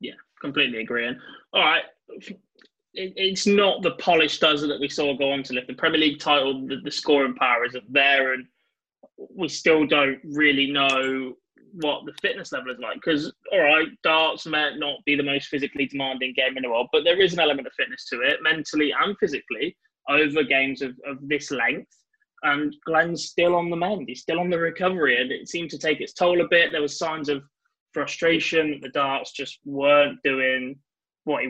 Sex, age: male, 20-39